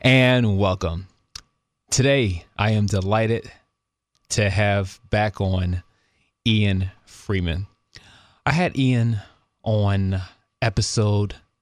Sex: male